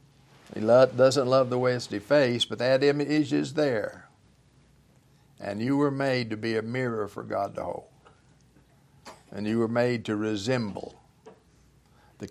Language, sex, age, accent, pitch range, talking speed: English, male, 60-79, American, 110-135 Hz, 150 wpm